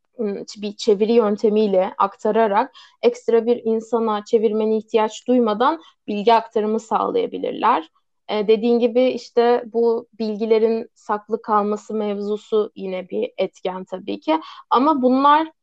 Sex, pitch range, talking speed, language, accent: female, 215-245 Hz, 110 wpm, Turkish, native